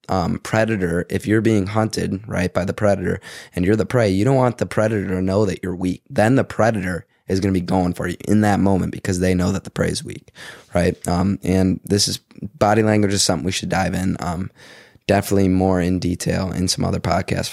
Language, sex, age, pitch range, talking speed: English, male, 20-39, 95-110 Hz, 230 wpm